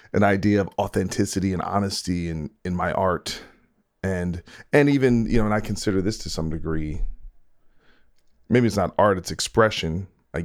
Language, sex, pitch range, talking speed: English, male, 85-105 Hz, 165 wpm